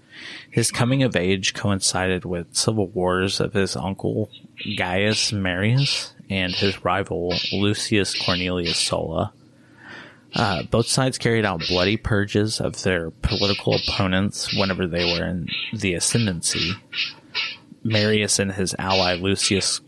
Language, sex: English, male